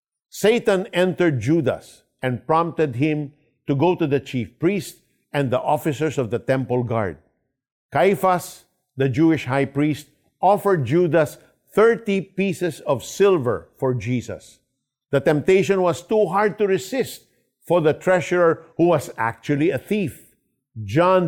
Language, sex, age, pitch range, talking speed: Filipino, male, 50-69, 130-175 Hz, 135 wpm